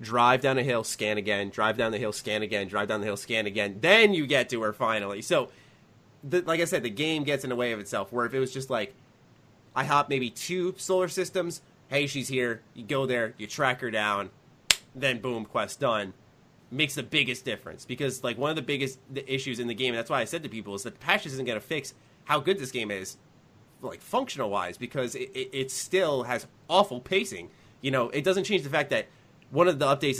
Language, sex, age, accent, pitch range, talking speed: English, male, 20-39, American, 120-155 Hz, 240 wpm